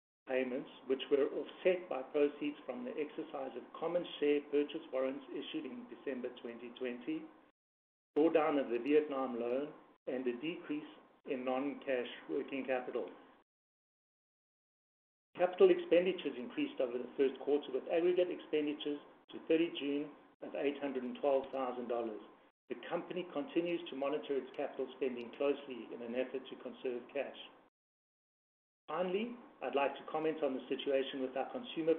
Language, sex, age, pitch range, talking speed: English, male, 60-79, 130-160 Hz, 130 wpm